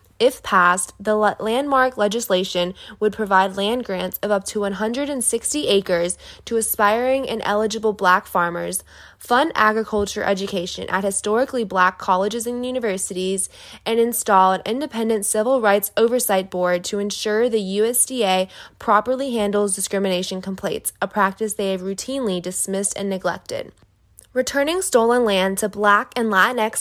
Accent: American